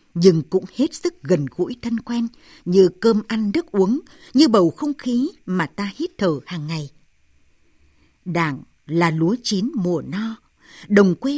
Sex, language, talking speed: female, Vietnamese, 165 wpm